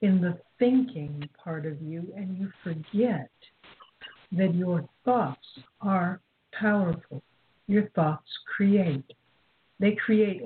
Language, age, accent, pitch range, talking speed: English, 60-79, American, 175-215 Hz, 110 wpm